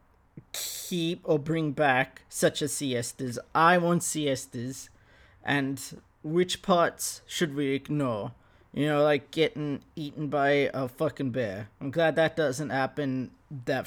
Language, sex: English, male